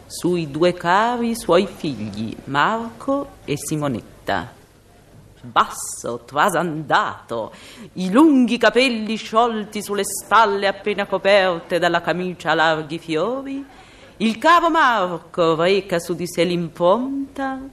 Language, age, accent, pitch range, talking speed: Italian, 40-59, native, 140-225 Hz, 105 wpm